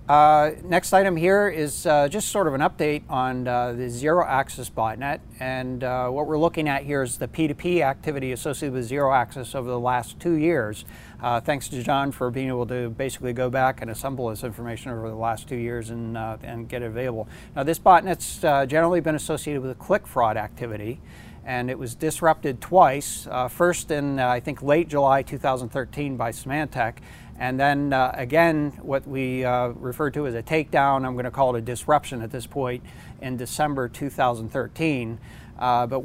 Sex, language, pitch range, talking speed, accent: male, English, 125-145 Hz, 195 wpm, American